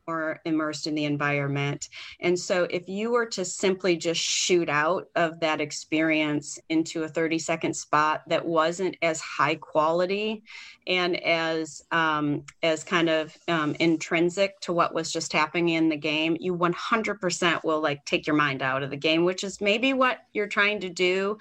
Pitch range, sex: 160-200 Hz, female